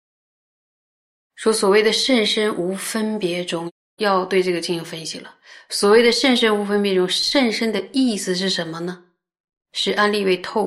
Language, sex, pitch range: Chinese, female, 175-210 Hz